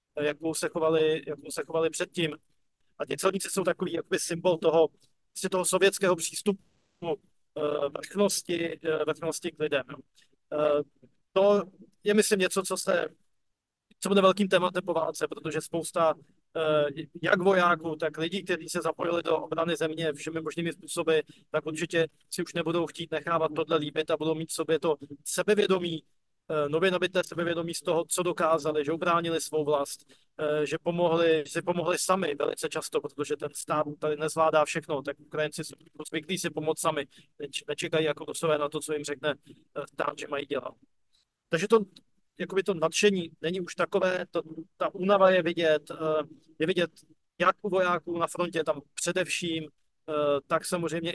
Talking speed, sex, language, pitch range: 155 wpm, male, Slovak, 155-175 Hz